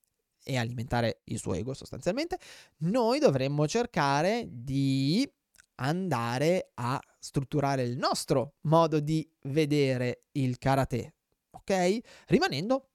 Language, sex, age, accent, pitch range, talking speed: Italian, male, 20-39, native, 130-180 Hz, 100 wpm